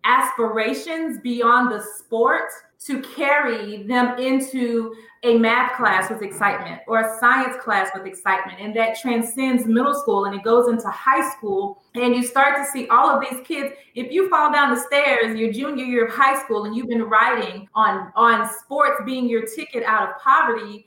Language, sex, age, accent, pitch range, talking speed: English, female, 30-49, American, 220-265 Hz, 180 wpm